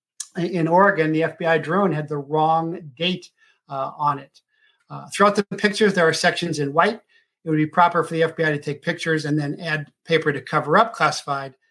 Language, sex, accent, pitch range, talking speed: English, male, American, 150-175 Hz, 200 wpm